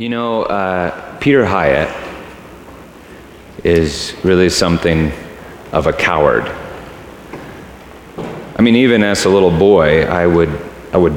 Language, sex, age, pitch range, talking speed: English, male, 30-49, 80-90 Hz, 115 wpm